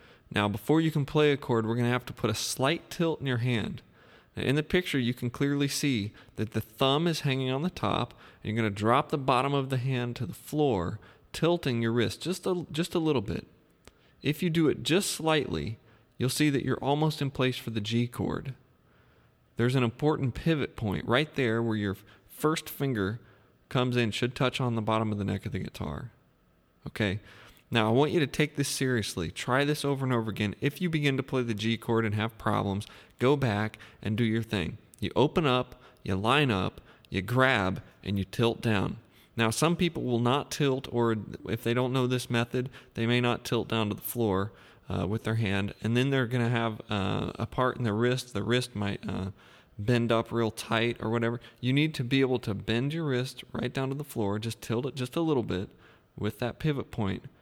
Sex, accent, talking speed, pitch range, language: male, American, 225 wpm, 110-135 Hz, English